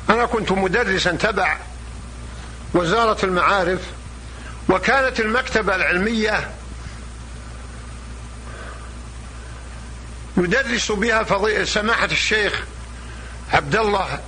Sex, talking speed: male, 65 wpm